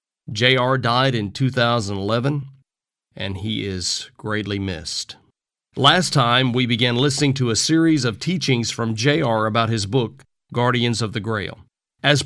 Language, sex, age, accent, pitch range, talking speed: English, male, 40-59, American, 115-145 Hz, 140 wpm